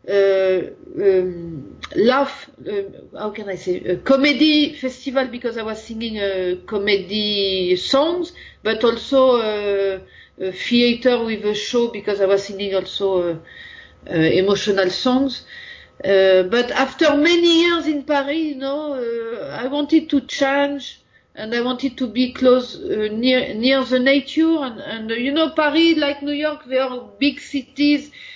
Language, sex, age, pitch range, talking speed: English, female, 40-59, 210-280 Hz, 155 wpm